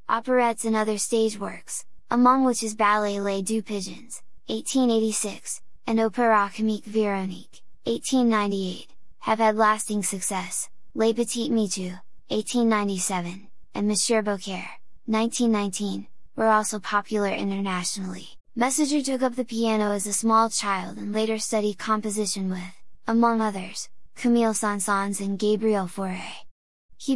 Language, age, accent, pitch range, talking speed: English, 10-29, American, 200-225 Hz, 125 wpm